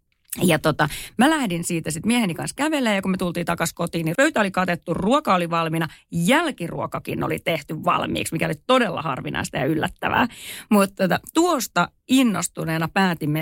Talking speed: 160 wpm